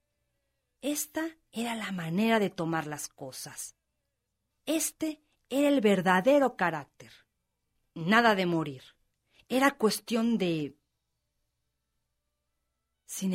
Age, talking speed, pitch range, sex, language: 40-59, 90 wpm, 140-230 Hz, female, Spanish